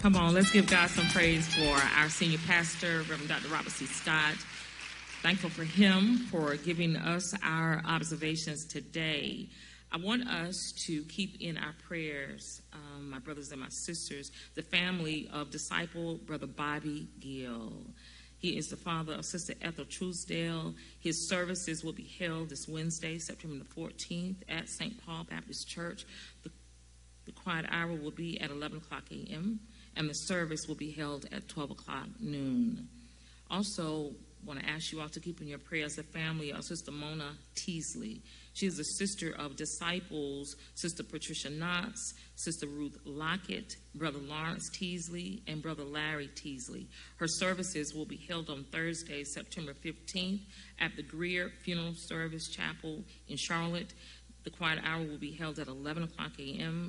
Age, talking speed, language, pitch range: 40-59, 160 wpm, English, 150-175 Hz